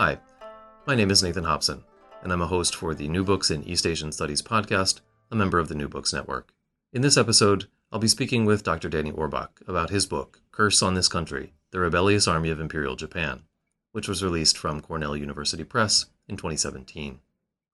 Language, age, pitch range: English, 30-49, 75-100 Hz